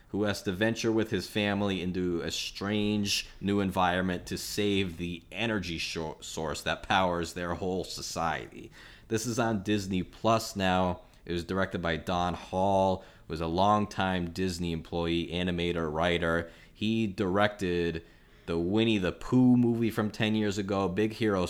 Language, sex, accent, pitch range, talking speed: English, male, American, 90-115 Hz, 155 wpm